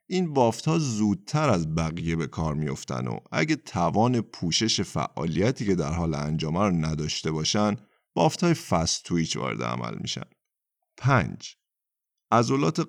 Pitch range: 85-125 Hz